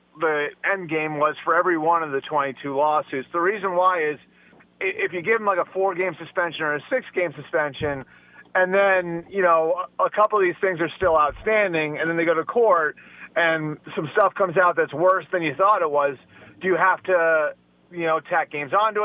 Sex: male